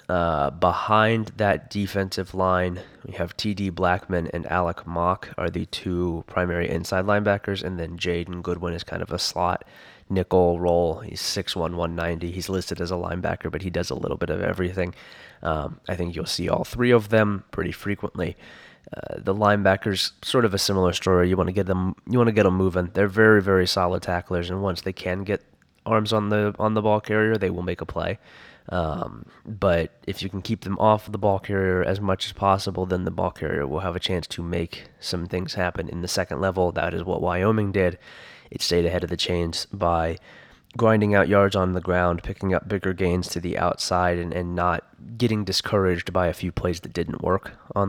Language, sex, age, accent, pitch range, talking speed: English, male, 20-39, American, 90-100 Hz, 210 wpm